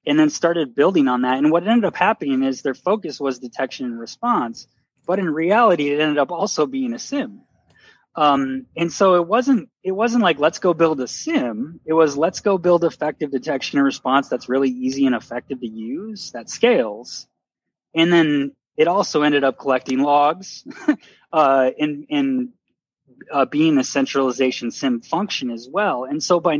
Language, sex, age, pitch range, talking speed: English, male, 20-39, 135-185 Hz, 185 wpm